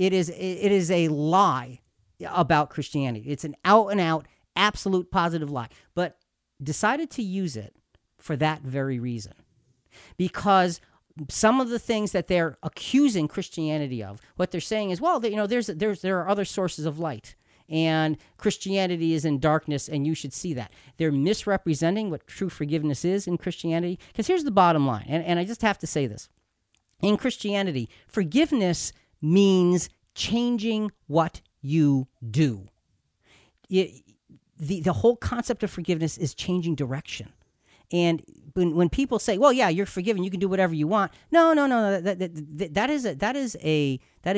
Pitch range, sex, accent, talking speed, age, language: 140-195 Hz, male, American, 160 wpm, 40-59, English